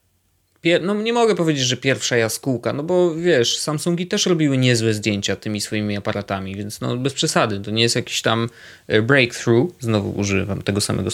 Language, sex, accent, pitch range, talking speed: Polish, male, native, 105-135 Hz, 170 wpm